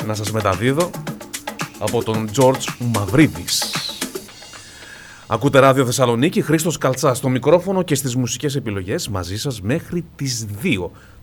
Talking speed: 125 wpm